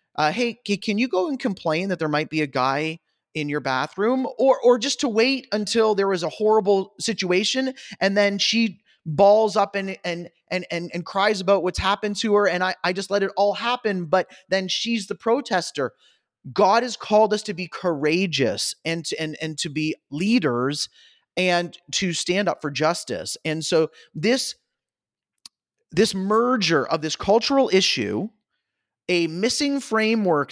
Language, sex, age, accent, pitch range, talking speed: English, male, 30-49, American, 155-210 Hz, 170 wpm